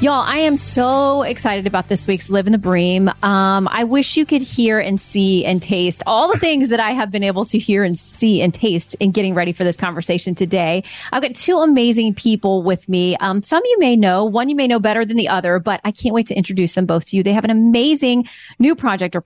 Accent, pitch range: American, 185-235 Hz